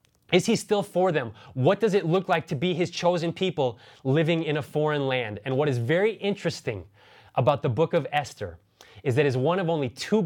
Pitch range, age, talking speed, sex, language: 130-165 Hz, 20-39, 215 wpm, male, English